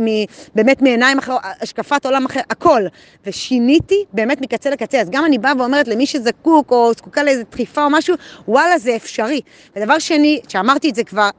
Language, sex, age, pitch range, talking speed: Hebrew, female, 20-39, 225-295 Hz, 180 wpm